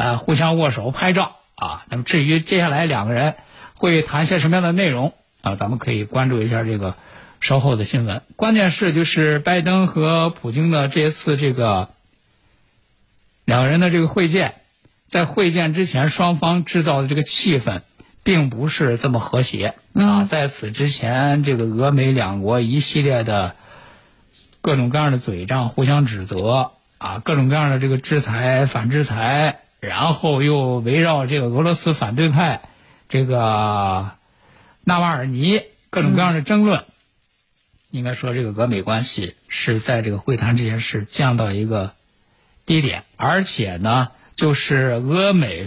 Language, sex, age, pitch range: Chinese, male, 60-79, 115-165 Hz